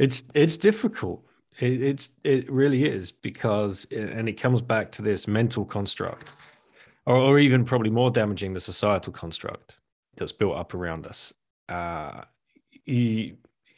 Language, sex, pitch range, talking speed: English, male, 95-120 Hz, 145 wpm